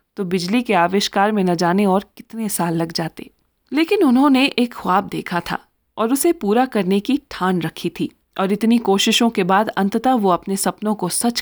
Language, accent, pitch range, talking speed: Hindi, native, 180-230 Hz, 185 wpm